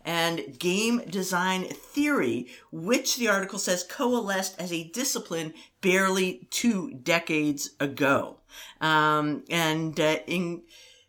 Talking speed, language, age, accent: 110 wpm, English, 50-69, American